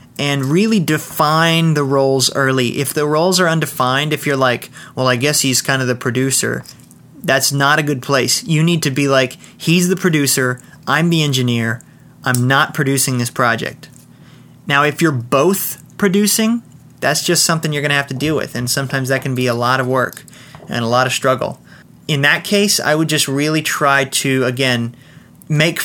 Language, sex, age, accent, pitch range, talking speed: English, male, 30-49, American, 130-165 Hz, 195 wpm